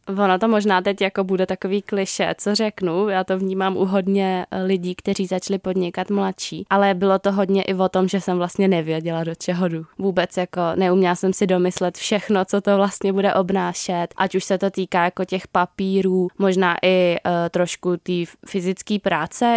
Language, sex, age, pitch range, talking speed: Czech, female, 20-39, 175-195 Hz, 185 wpm